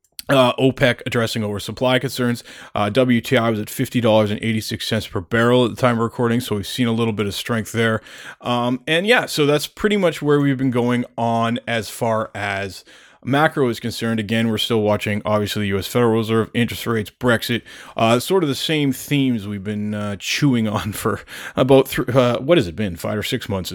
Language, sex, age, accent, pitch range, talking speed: English, male, 30-49, American, 110-135 Hz, 200 wpm